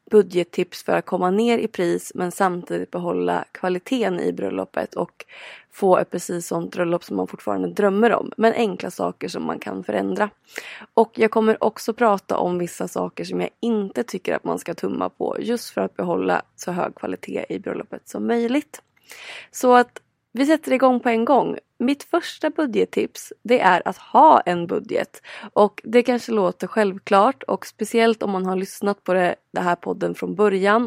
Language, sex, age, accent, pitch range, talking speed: Swedish, female, 20-39, native, 175-230 Hz, 185 wpm